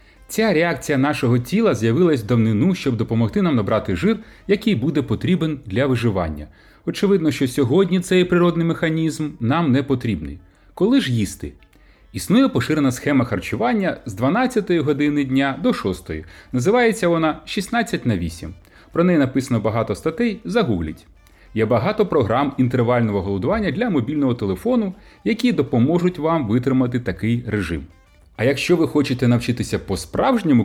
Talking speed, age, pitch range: 135 wpm, 30-49, 110-175 Hz